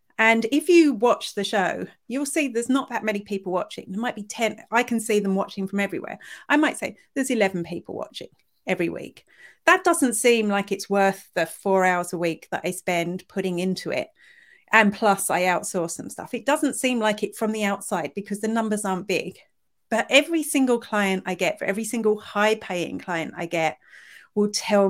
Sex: female